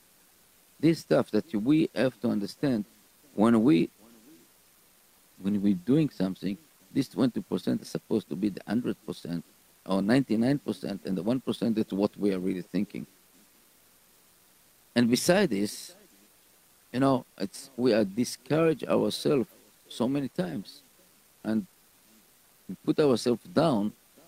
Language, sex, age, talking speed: English, male, 50-69, 125 wpm